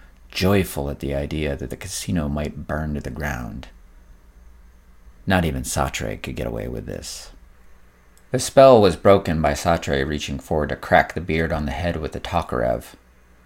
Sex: male